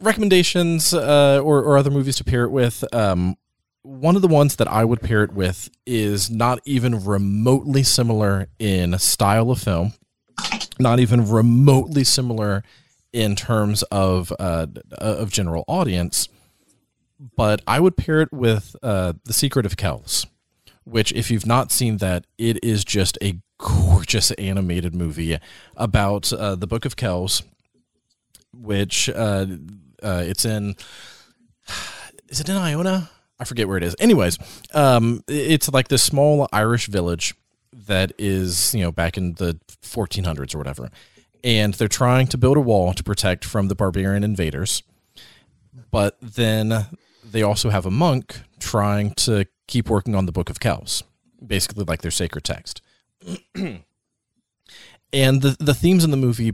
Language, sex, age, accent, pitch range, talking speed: English, male, 30-49, American, 95-125 Hz, 155 wpm